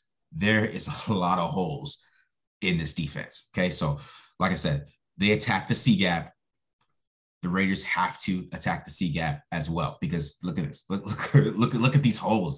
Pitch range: 95-140 Hz